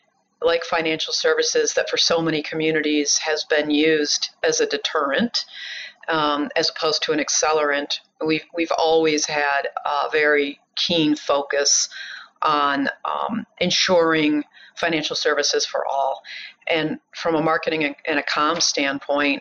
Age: 40-59